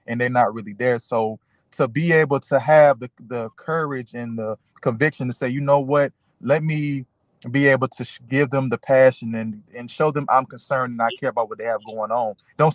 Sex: male